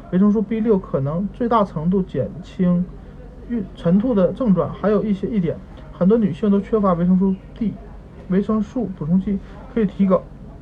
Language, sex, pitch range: Chinese, male, 170-205 Hz